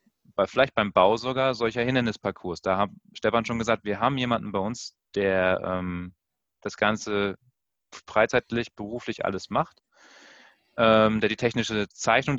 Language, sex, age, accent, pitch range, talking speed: German, male, 30-49, German, 100-120 Hz, 145 wpm